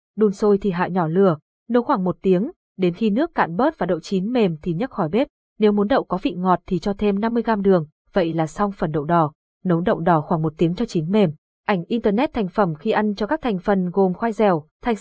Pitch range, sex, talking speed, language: 185-230 Hz, female, 250 wpm, Vietnamese